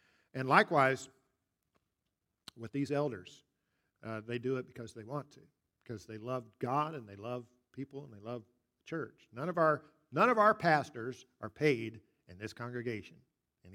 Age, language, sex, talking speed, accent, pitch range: 50-69, English, male, 170 wpm, American, 120-160 Hz